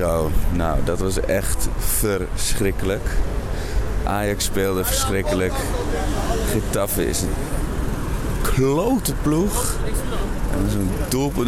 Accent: Dutch